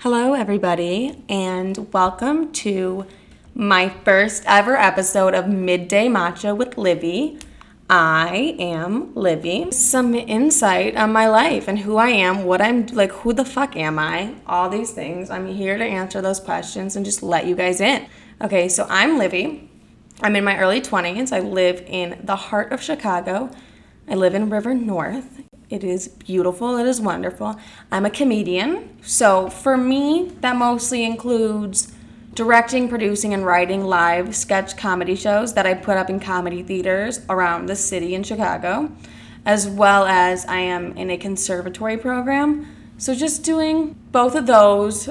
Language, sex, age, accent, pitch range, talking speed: English, female, 20-39, American, 185-240 Hz, 160 wpm